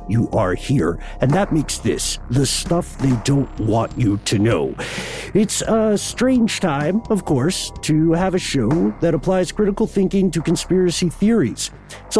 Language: English